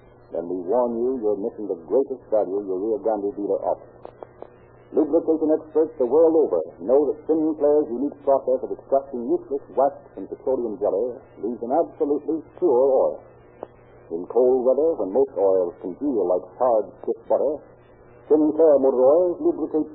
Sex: male